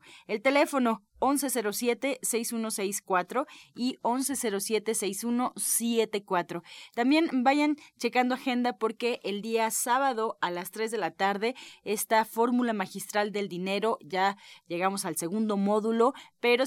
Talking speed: 110 wpm